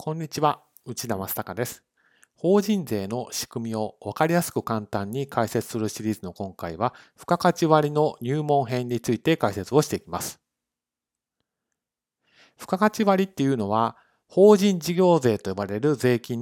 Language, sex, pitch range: Japanese, male, 110-160 Hz